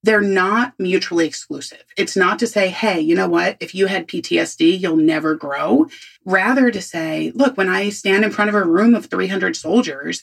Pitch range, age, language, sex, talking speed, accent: 195-260 Hz, 30-49, English, female, 200 wpm, American